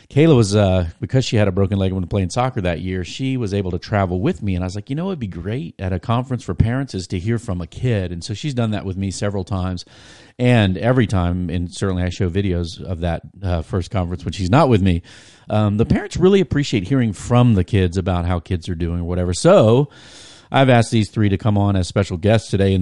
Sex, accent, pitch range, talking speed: male, American, 90-115 Hz, 255 wpm